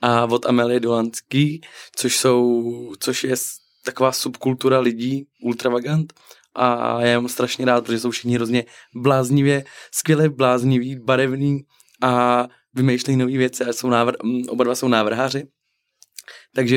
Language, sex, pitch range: Czech, male, 120-130 Hz